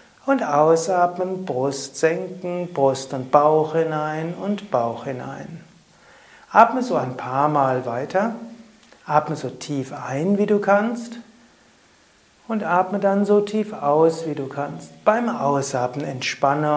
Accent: German